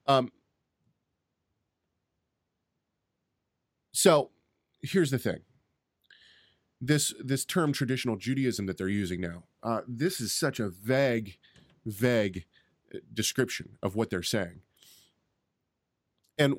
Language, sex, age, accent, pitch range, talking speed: English, male, 30-49, American, 100-135 Hz, 100 wpm